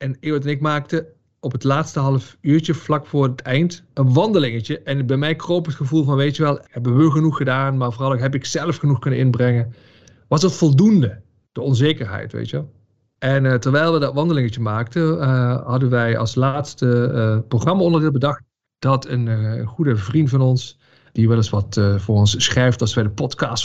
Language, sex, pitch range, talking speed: Dutch, male, 115-150 Hz, 205 wpm